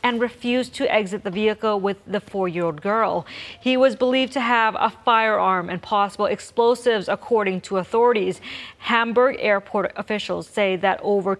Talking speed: 155 wpm